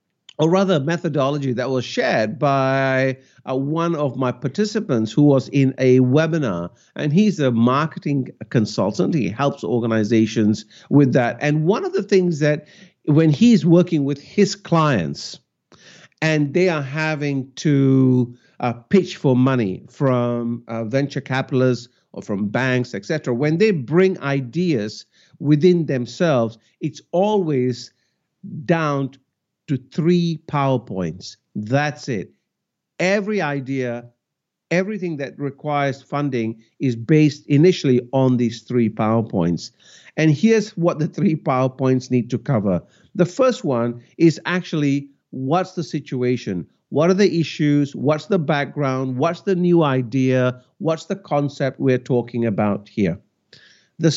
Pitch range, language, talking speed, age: 125-165 Hz, English, 130 wpm, 50-69